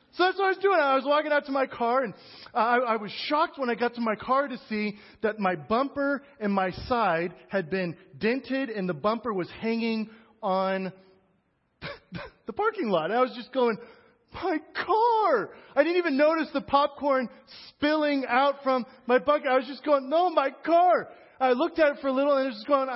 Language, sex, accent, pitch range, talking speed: English, male, American, 200-275 Hz, 210 wpm